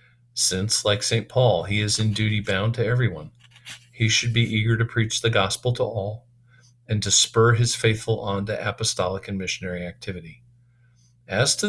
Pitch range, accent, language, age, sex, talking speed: 100-120 Hz, American, English, 50-69, male, 175 wpm